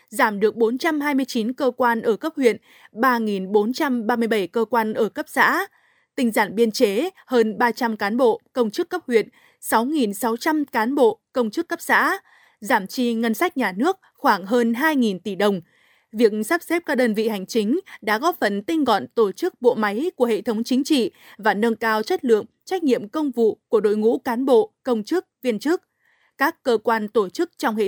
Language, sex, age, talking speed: Vietnamese, female, 20-39, 195 wpm